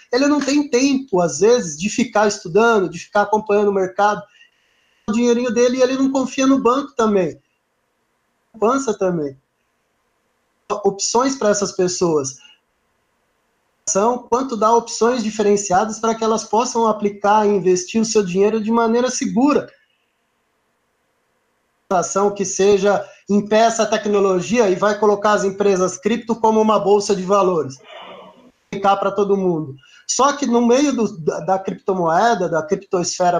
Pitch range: 195-240 Hz